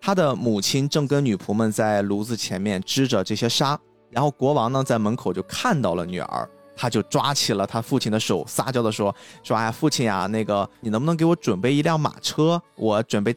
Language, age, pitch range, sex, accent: Chinese, 20-39, 110-150 Hz, male, native